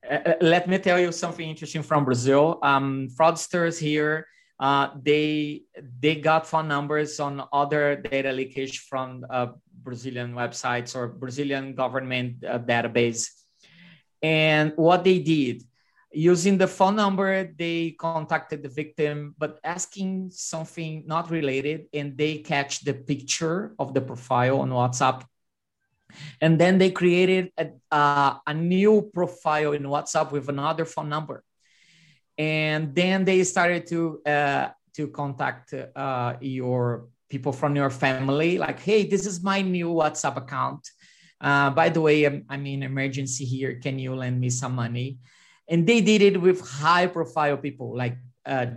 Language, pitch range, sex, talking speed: Spanish, 135-165 Hz, male, 145 wpm